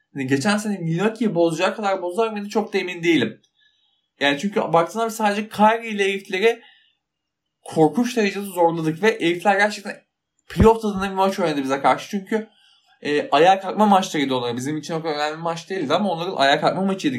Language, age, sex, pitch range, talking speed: Turkish, 20-39, male, 155-205 Hz, 170 wpm